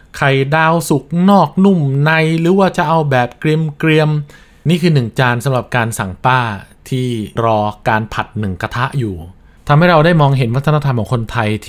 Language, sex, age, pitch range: Thai, male, 20-39, 105-145 Hz